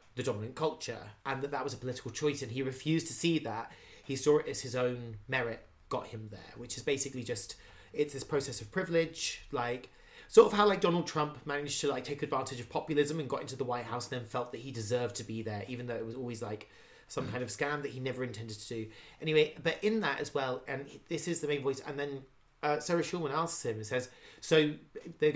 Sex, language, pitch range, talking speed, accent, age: male, English, 125-155 Hz, 245 wpm, British, 30-49